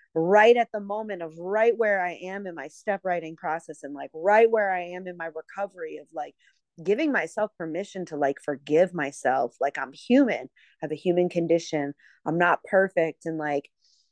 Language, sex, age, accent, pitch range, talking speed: English, female, 30-49, American, 160-200 Hz, 190 wpm